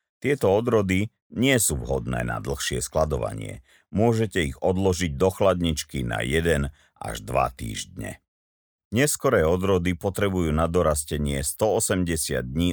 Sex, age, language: male, 50-69, Slovak